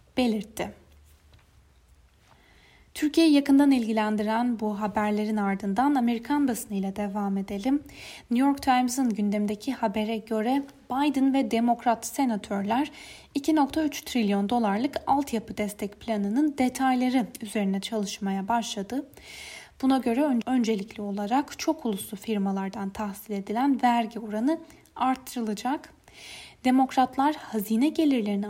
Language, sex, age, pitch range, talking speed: Turkish, female, 10-29, 210-265 Hz, 95 wpm